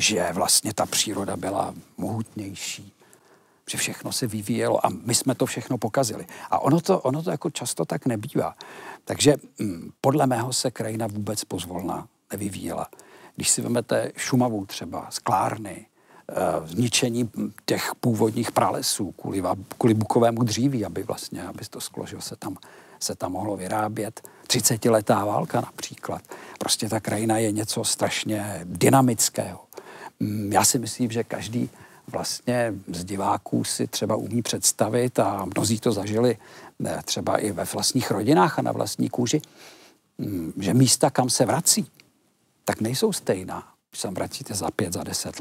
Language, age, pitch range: Czech, 50-69, 105-125 Hz